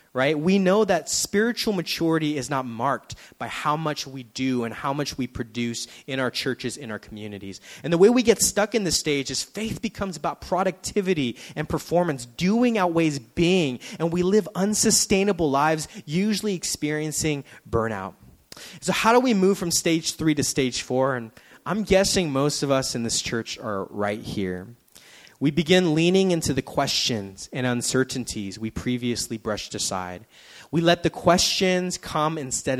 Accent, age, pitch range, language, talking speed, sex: American, 20-39, 115-170 Hz, English, 170 wpm, male